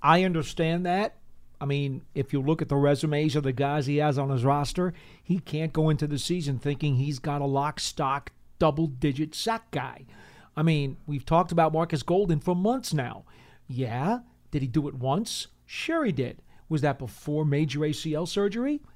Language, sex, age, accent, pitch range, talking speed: English, male, 40-59, American, 145-190 Hz, 185 wpm